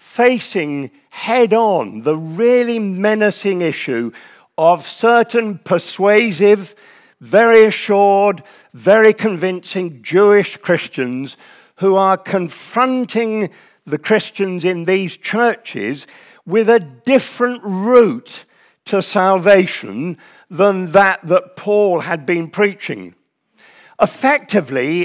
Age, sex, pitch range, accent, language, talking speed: 50-69, male, 170-220 Hz, British, English, 90 wpm